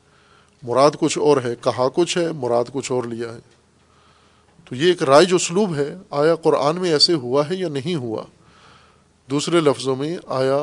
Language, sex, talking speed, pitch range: Urdu, male, 180 wpm, 125-175 Hz